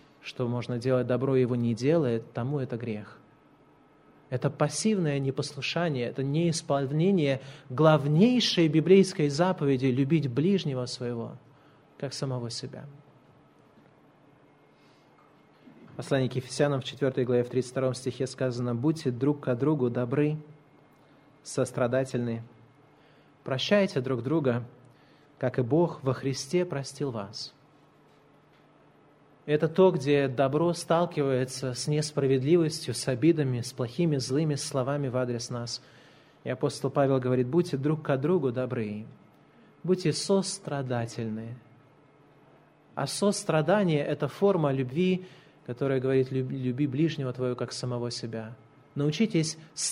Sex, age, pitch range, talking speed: male, 30-49, 130-155 Hz, 110 wpm